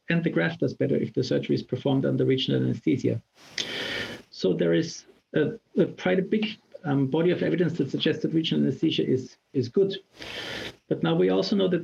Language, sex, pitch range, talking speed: English, male, 130-180 Hz, 195 wpm